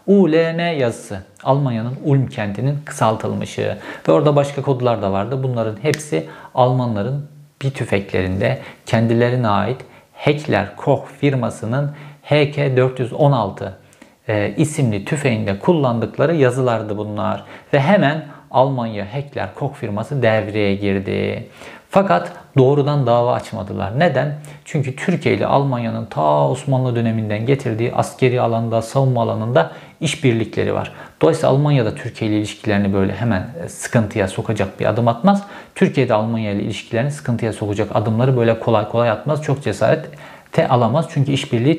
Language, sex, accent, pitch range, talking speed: Turkish, male, native, 110-145 Hz, 120 wpm